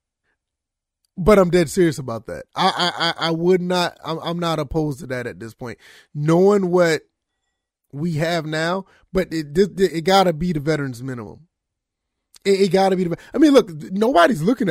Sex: male